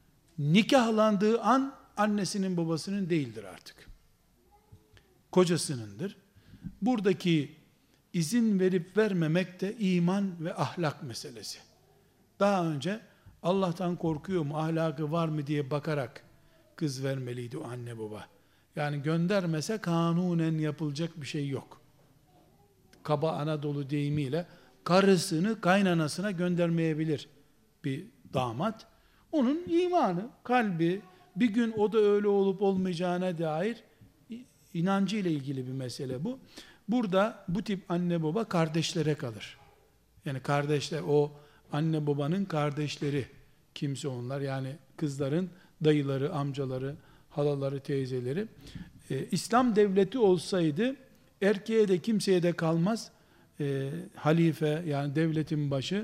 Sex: male